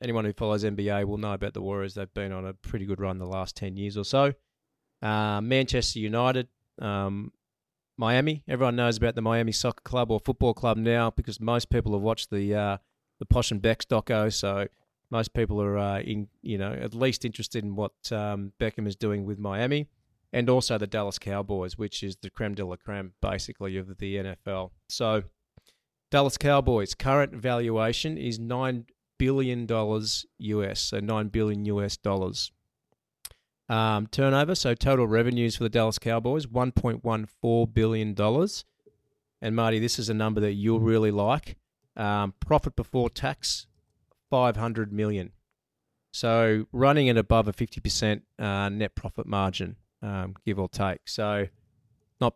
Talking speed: 170 wpm